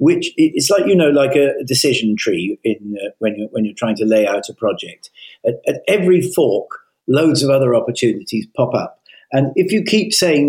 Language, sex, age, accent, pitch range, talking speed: English, male, 50-69, British, 115-150 Hz, 205 wpm